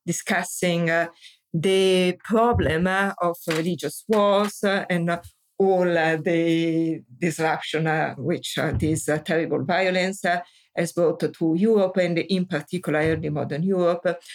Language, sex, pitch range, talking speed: English, female, 165-195 Hz, 140 wpm